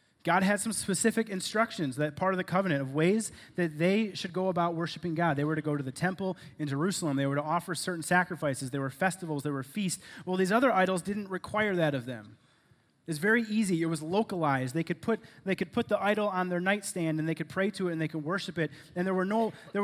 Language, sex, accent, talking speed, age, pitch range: English, male, American, 250 wpm, 30-49, 145-190 Hz